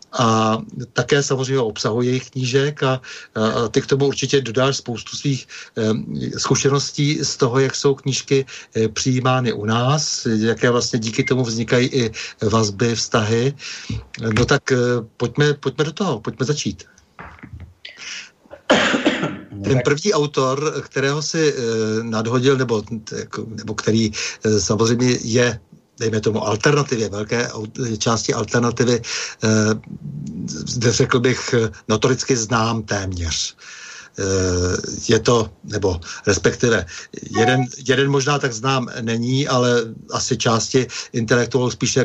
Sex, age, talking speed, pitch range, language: male, 60-79, 110 wpm, 110-130 Hz, Czech